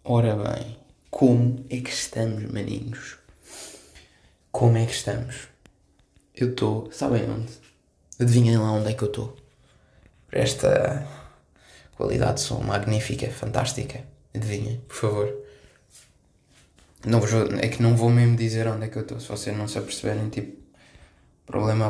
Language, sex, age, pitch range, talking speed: Portuguese, male, 20-39, 105-125 Hz, 135 wpm